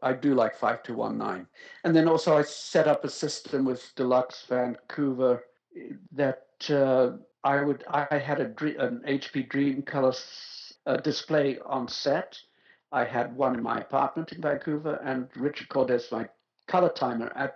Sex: male